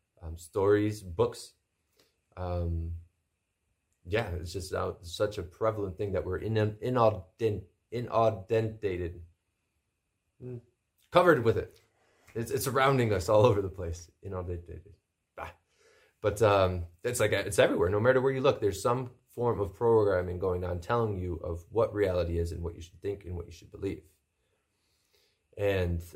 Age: 20-39